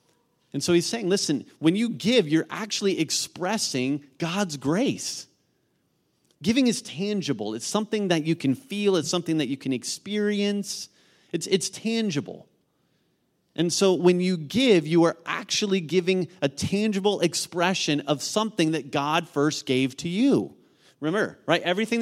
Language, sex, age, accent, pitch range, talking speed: English, male, 30-49, American, 155-205 Hz, 145 wpm